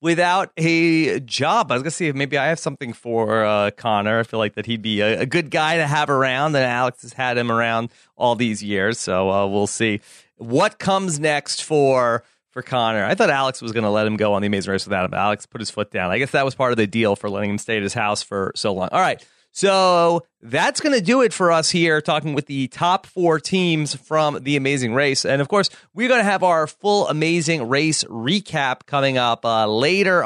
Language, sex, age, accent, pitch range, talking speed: English, male, 30-49, American, 115-160 Hz, 245 wpm